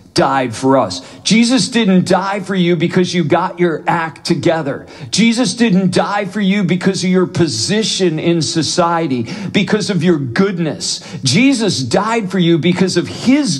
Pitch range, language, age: 145-195 Hz, English, 50-69